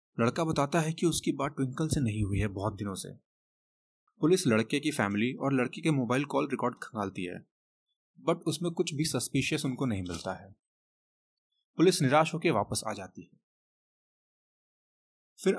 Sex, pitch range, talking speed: male, 110-160 Hz, 45 wpm